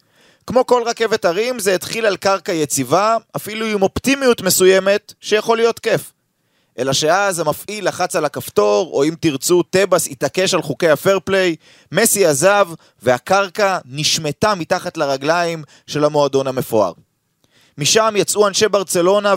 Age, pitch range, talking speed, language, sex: 30-49, 145-200 Hz, 135 wpm, Hebrew, male